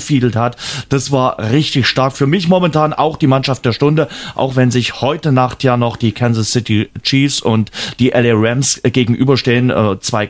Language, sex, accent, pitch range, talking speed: German, male, German, 115-140 Hz, 180 wpm